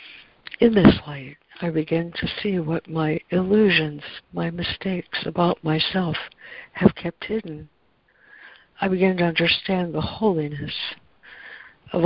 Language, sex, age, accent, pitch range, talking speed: English, female, 60-79, American, 155-180 Hz, 120 wpm